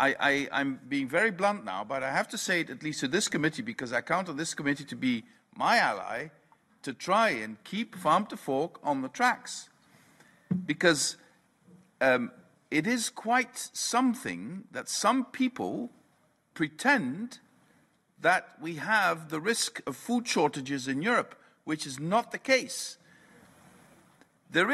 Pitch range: 150-235 Hz